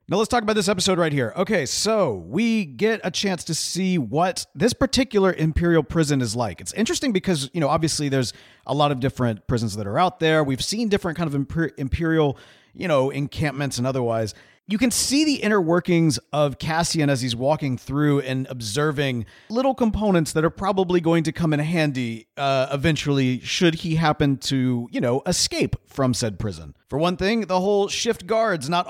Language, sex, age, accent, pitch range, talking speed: English, male, 40-59, American, 140-195 Hz, 195 wpm